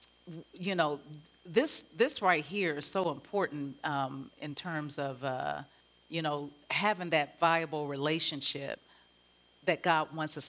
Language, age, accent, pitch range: English, 40-59, American, 145-185 Hz